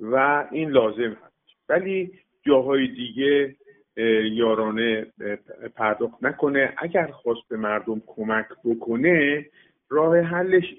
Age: 50-69